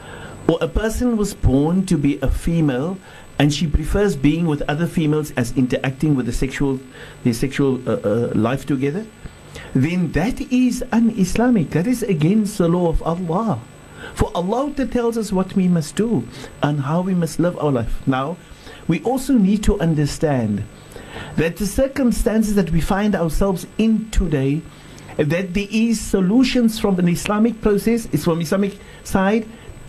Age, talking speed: 60-79, 165 wpm